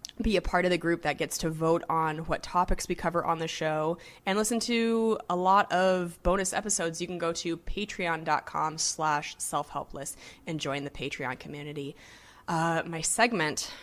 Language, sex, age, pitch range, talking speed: English, female, 20-39, 160-205 Hz, 180 wpm